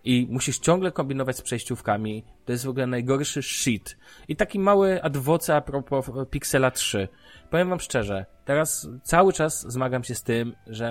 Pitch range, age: 110-135 Hz, 20-39